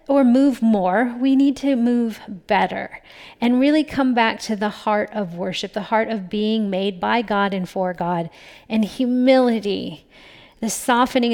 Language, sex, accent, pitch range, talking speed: English, female, American, 210-260 Hz, 165 wpm